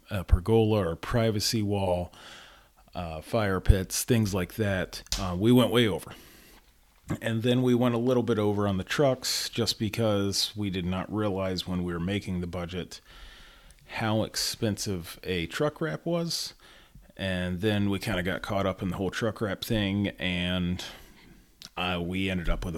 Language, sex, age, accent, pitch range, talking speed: English, male, 30-49, American, 90-105 Hz, 170 wpm